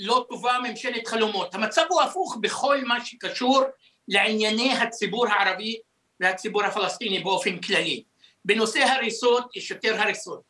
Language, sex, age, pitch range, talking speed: Hebrew, male, 60-79, 210-255 Hz, 125 wpm